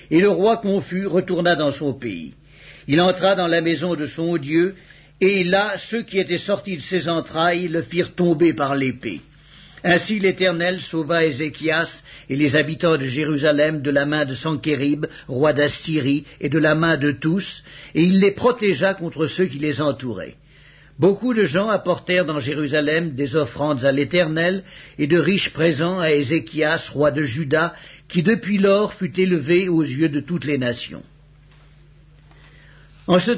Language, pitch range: English, 150-185 Hz